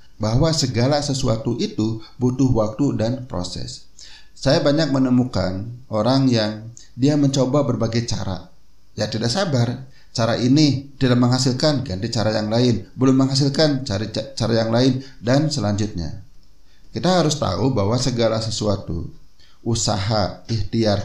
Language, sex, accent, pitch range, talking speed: Indonesian, male, native, 105-135 Hz, 125 wpm